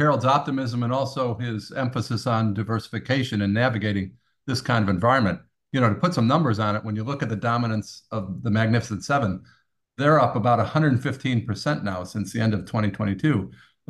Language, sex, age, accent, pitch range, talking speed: English, male, 50-69, American, 110-135 Hz, 180 wpm